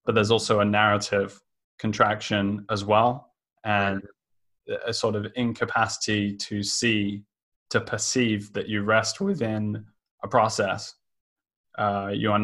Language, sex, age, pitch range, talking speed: English, male, 20-39, 100-110 Hz, 125 wpm